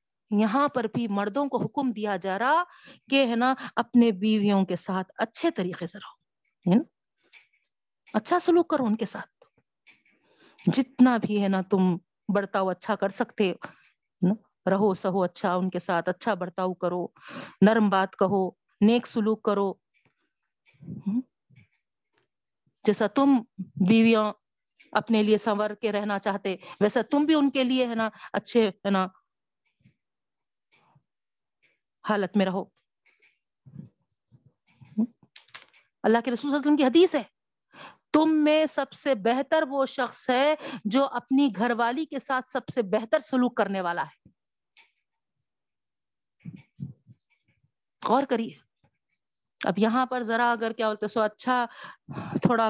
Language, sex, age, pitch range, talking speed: Urdu, female, 50-69, 200-255 Hz, 130 wpm